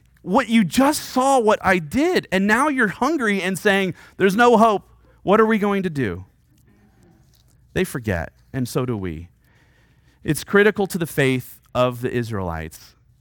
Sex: male